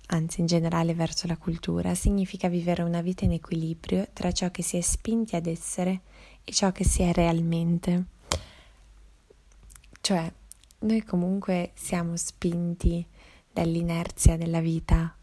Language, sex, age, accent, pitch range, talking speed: Italian, female, 20-39, native, 165-180 Hz, 135 wpm